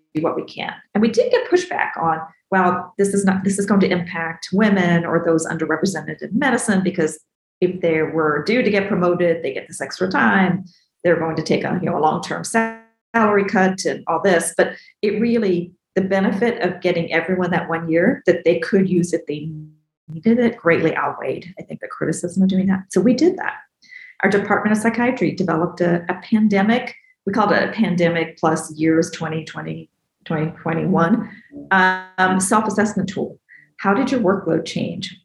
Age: 40-59